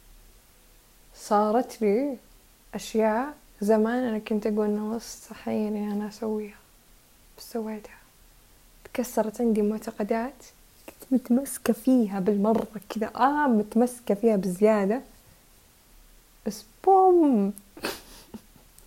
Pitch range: 205-235 Hz